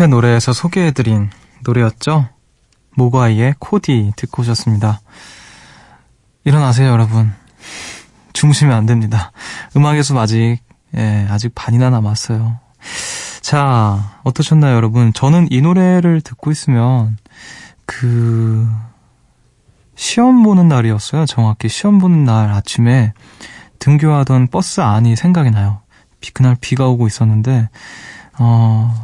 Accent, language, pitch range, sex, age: native, Korean, 115-140 Hz, male, 20-39